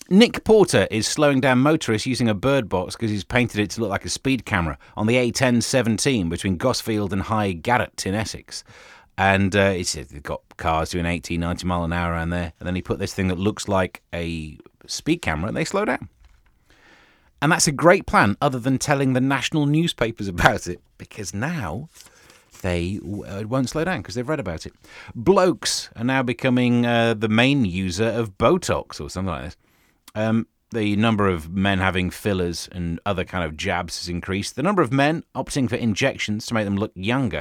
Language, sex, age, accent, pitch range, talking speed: English, male, 30-49, British, 90-125 Hz, 205 wpm